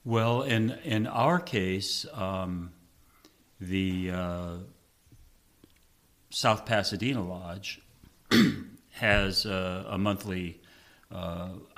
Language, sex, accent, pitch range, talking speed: English, male, American, 90-100 Hz, 80 wpm